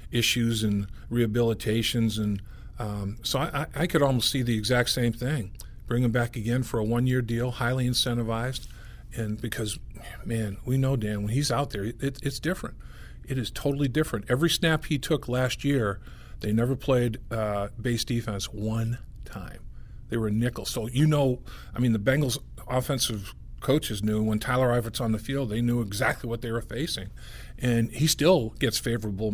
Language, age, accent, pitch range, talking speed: English, 50-69, American, 110-125 Hz, 175 wpm